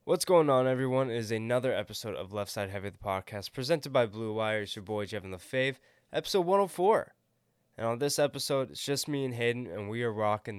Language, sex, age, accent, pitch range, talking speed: English, male, 10-29, American, 100-125 Hz, 210 wpm